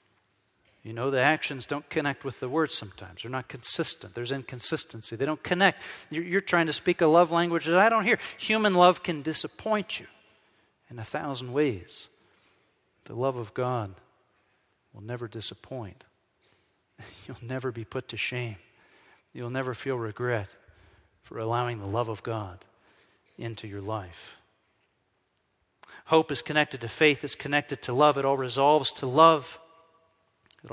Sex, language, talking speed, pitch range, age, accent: male, English, 155 wpm, 110-155 Hz, 40-59, American